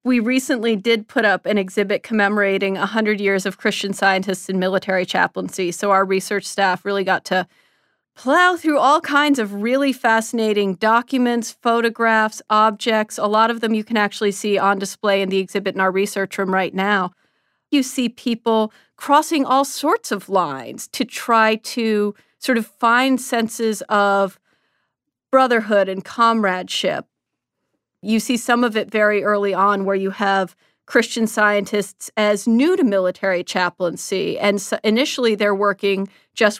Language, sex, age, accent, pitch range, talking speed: English, female, 40-59, American, 195-235 Hz, 155 wpm